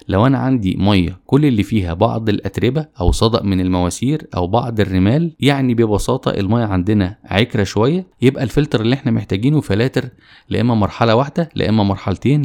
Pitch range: 95-120 Hz